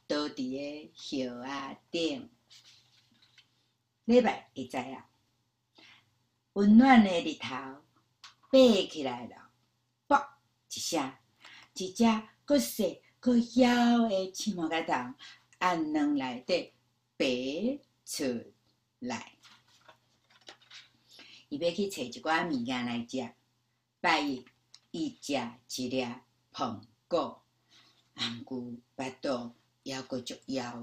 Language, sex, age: Chinese, female, 60-79